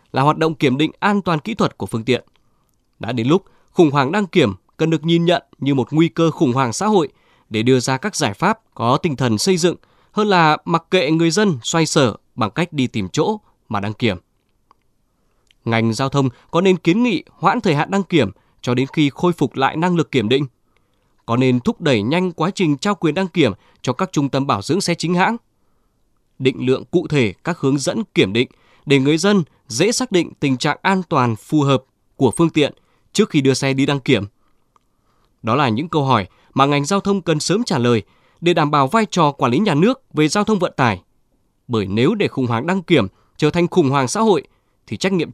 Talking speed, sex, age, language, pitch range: 230 wpm, male, 20-39, Vietnamese, 120-175 Hz